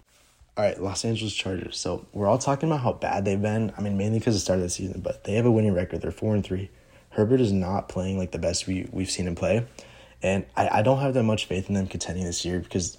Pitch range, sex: 95-105 Hz, male